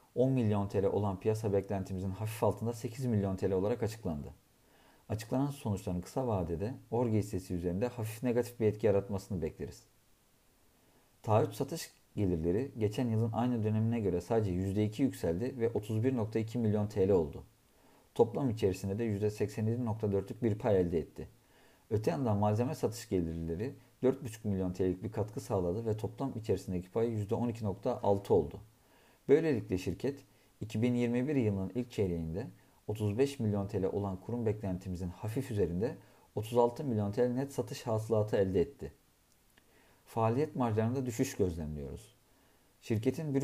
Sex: male